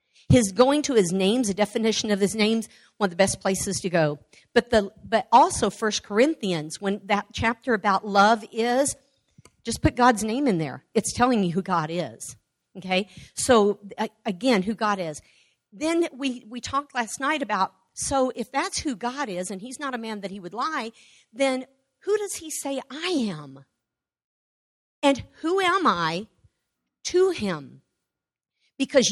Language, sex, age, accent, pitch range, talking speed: English, female, 50-69, American, 180-255 Hz, 170 wpm